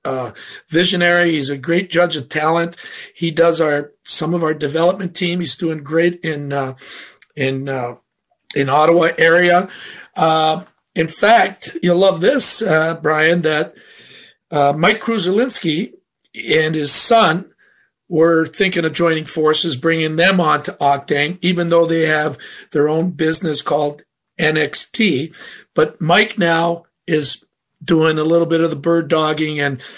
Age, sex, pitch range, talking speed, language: 50-69, male, 155-180 Hz, 145 wpm, English